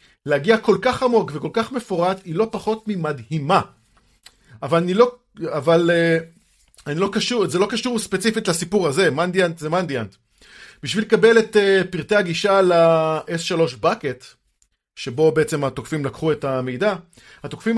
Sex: male